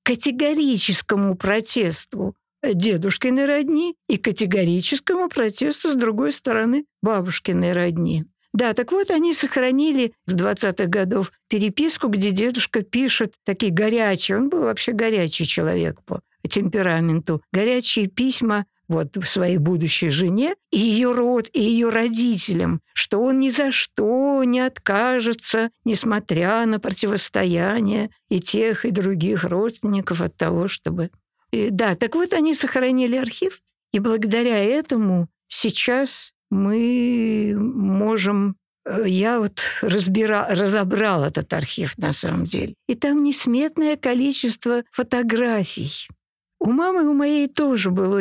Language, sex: Russian, female